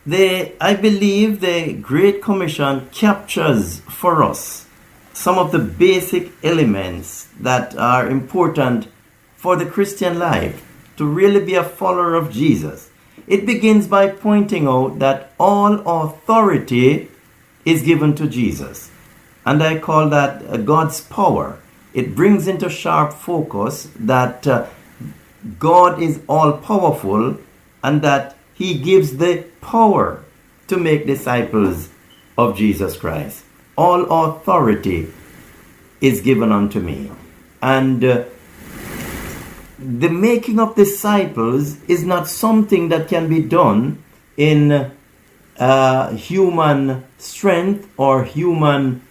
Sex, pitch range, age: male, 130-185 Hz, 50-69